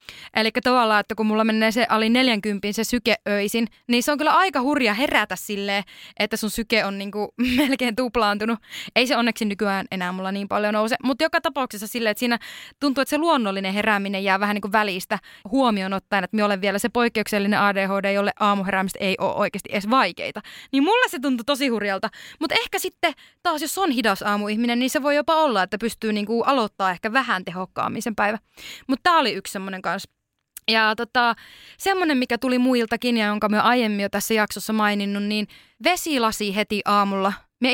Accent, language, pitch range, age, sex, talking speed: native, Finnish, 200-250 Hz, 20-39, female, 190 wpm